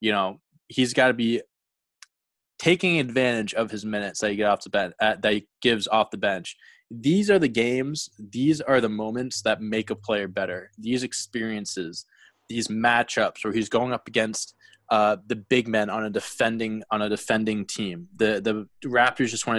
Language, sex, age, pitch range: English, male, 20-39, 110-135 Hz